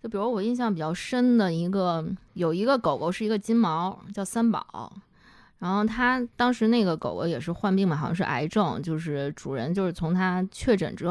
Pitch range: 170-220 Hz